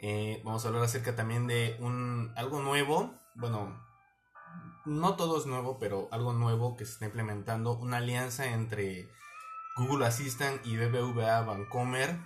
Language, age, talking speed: Spanish, 20-39, 145 wpm